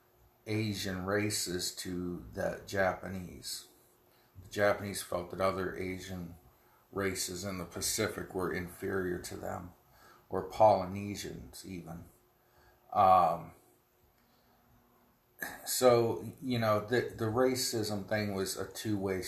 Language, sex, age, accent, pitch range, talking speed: English, male, 40-59, American, 90-110 Hz, 105 wpm